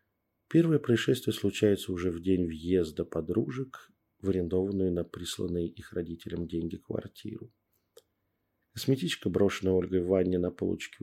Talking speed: 125 wpm